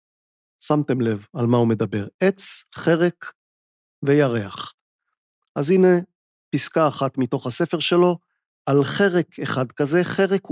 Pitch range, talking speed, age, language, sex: 135-185 Hz, 120 wpm, 50-69, Hebrew, male